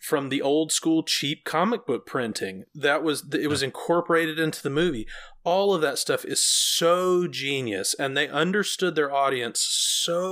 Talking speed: 170 wpm